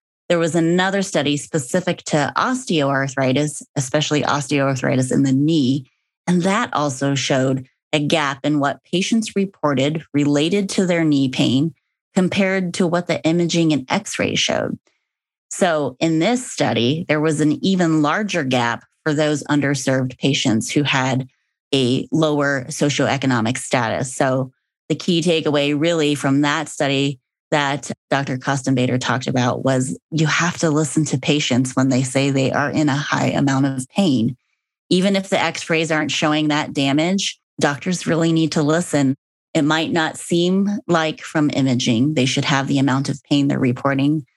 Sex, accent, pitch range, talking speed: female, American, 135-165 Hz, 155 wpm